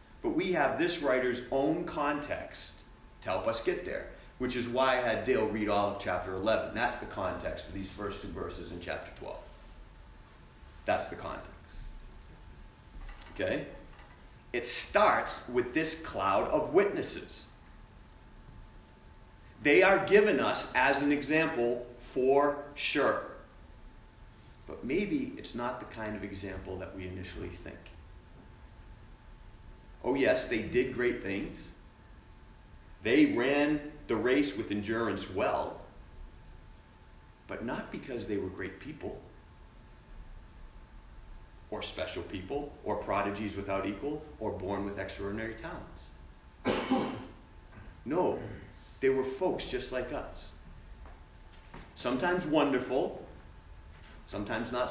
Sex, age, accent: male, 40-59, American